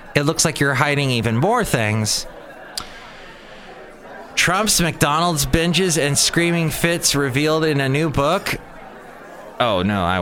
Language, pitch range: English, 105-145 Hz